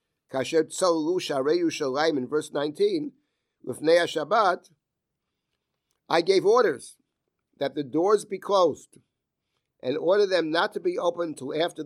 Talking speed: 110 wpm